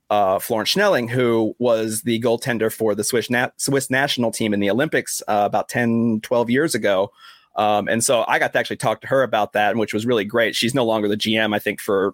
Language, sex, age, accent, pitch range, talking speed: English, male, 30-49, American, 110-130 Hz, 230 wpm